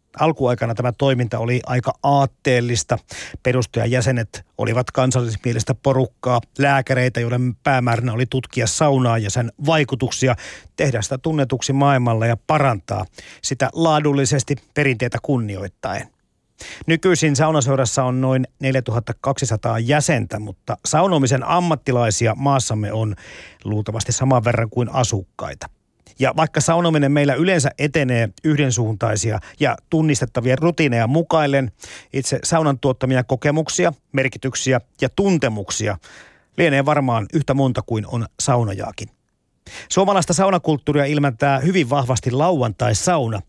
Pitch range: 115-145 Hz